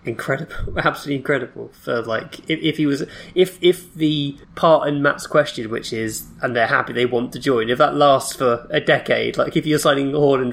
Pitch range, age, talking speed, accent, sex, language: 115-145 Hz, 20-39, 205 wpm, British, male, English